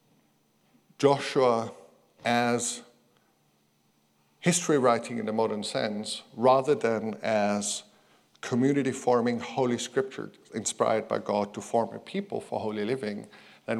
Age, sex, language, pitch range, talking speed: 50-69, male, English, 110-140 Hz, 110 wpm